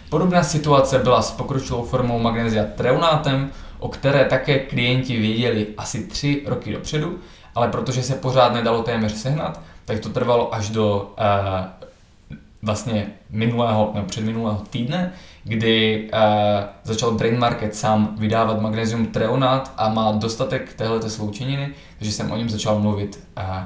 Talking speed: 140 wpm